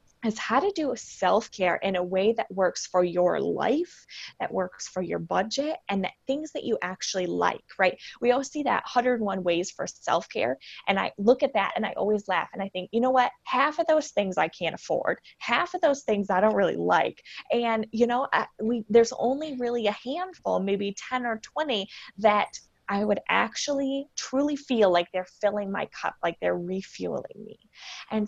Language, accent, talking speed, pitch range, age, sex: English, American, 200 wpm, 195-275 Hz, 20-39, female